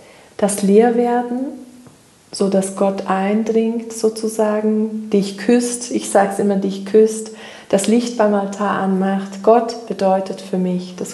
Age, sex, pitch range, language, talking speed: 40-59, female, 195-225 Hz, German, 135 wpm